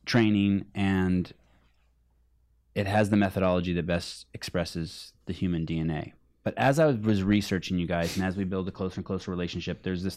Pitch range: 95-115 Hz